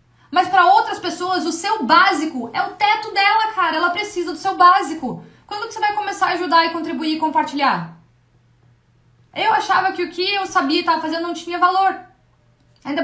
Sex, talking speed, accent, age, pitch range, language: female, 195 wpm, Brazilian, 20-39, 280-355 Hz, Portuguese